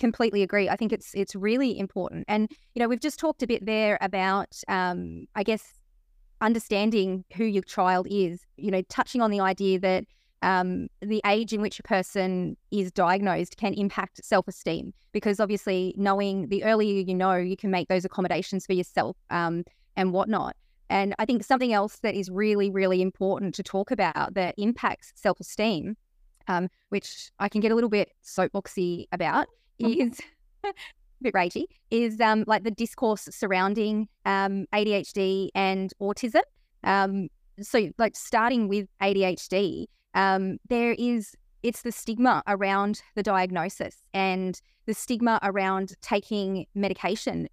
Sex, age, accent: female, 20-39, Australian